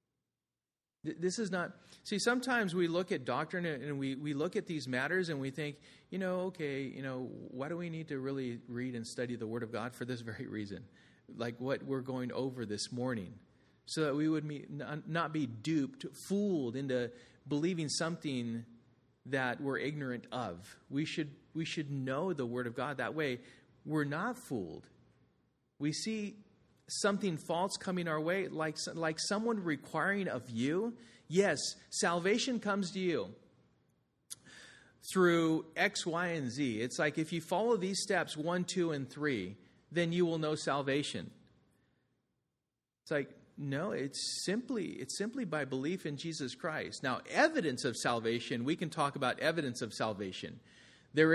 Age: 40-59